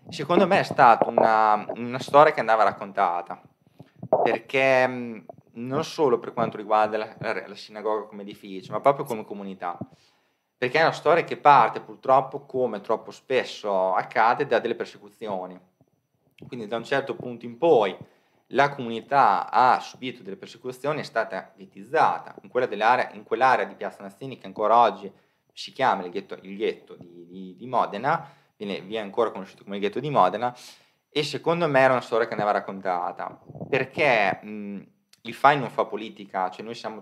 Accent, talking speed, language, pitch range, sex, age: native, 170 wpm, Italian, 100-130 Hz, male, 20-39